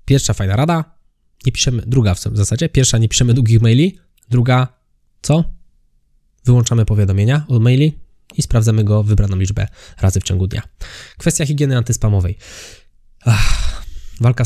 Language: Polish